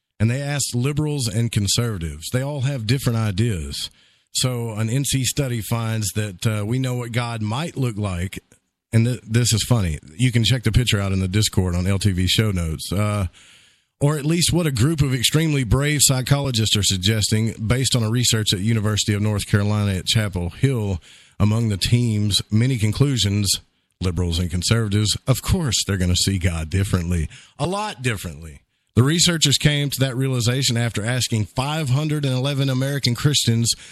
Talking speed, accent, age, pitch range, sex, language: 170 wpm, American, 40-59, 100-130 Hz, male, English